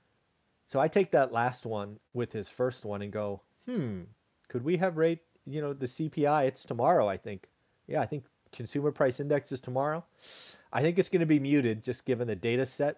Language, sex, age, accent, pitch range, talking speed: English, male, 30-49, American, 120-150 Hz, 210 wpm